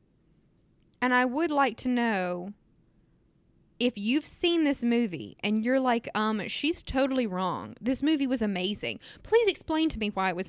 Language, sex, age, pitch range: English, female, 20-39, 215-285 Hz